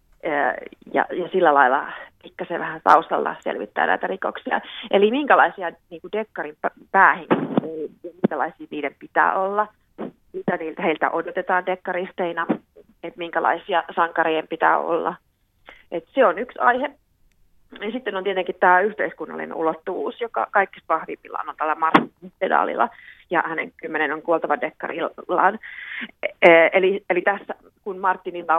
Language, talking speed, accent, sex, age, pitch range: Finnish, 120 wpm, native, female, 30-49, 165-195 Hz